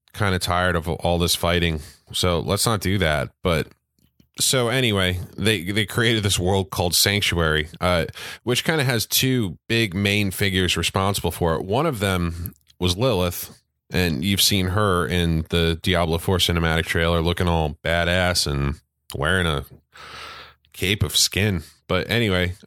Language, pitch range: English, 85-105 Hz